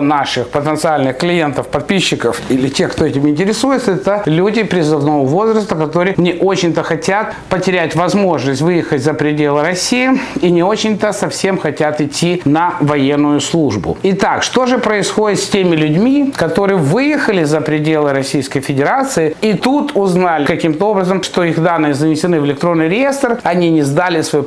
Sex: male